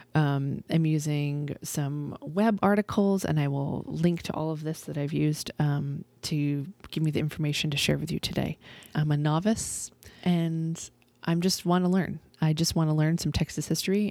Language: English